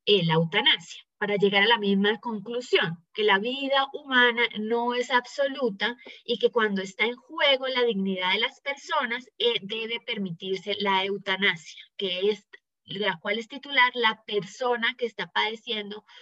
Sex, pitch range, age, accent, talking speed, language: female, 200-245 Hz, 20-39, Colombian, 150 wpm, Spanish